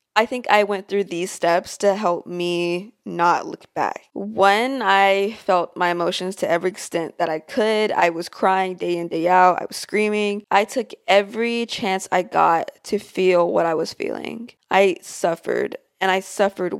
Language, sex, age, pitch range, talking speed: English, female, 20-39, 175-205 Hz, 180 wpm